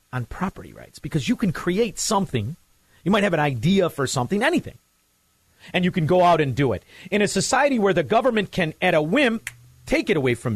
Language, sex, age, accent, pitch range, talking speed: English, male, 40-59, American, 125-195 Hz, 215 wpm